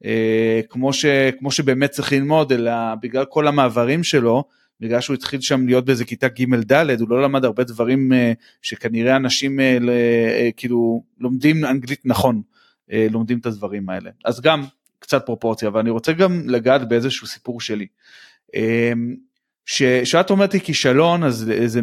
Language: Hebrew